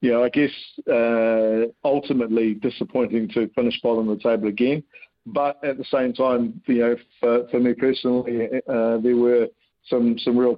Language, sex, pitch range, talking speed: English, male, 110-125 Hz, 180 wpm